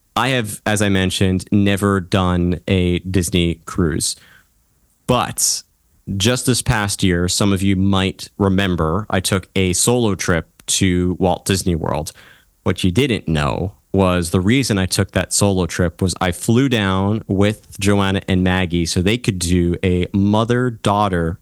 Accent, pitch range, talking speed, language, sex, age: American, 90-105 Hz, 155 wpm, English, male, 30-49